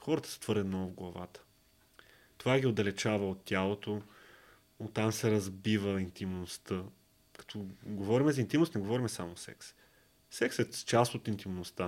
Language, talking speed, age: Bulgarian, 145 wpm, 30-49